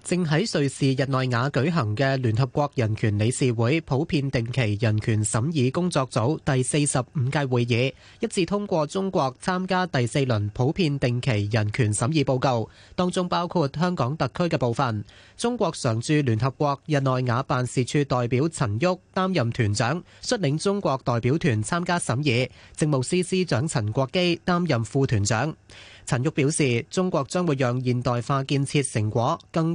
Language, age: Chinese, 30-49